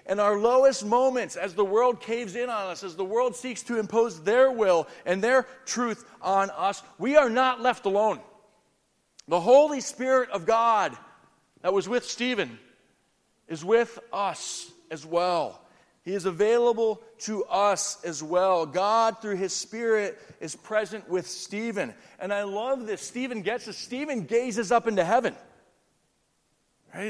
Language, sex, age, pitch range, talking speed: English, male, 40-59, 200-245 Hz, 155 wpm